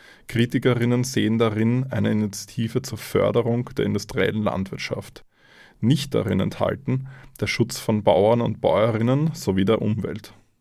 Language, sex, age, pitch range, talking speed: German, male, 20-39, 110-130 Hz, 125 wpm